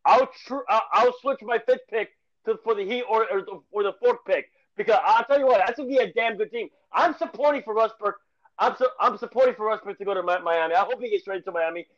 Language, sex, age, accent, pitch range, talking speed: English, male, 30-49, American, 215-295 Hz, 255 wpm